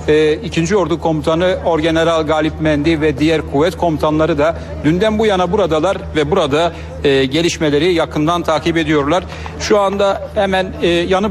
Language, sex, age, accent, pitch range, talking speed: Turkish, male, 60-79, native, 155-185 Hz, 135 wpm